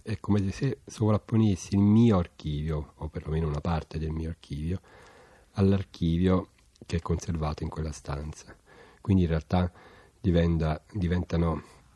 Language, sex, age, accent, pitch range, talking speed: Italian, male, 40-59, native, 75-95 Hz, 125 wpm